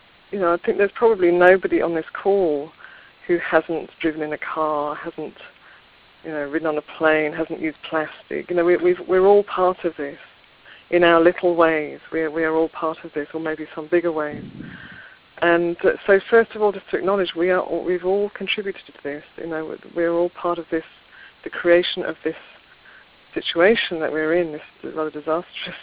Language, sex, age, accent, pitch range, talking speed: English, female, 40-59, British, 160-195 Hz, 200 wpm